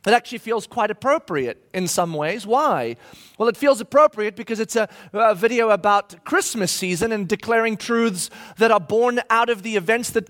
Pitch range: 220-275 Hz